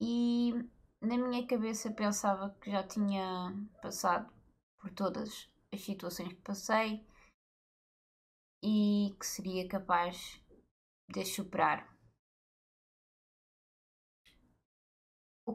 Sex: female